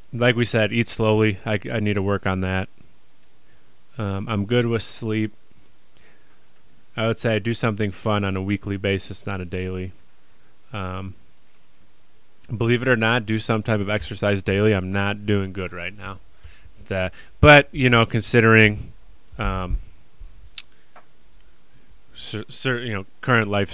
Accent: American